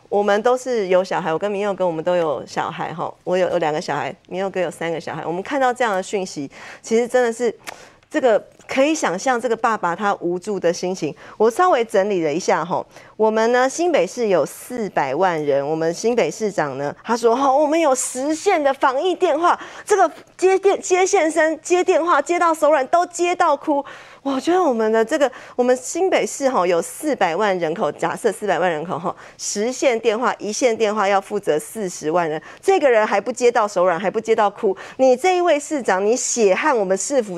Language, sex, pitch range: Chinese, female, 195-280 Hz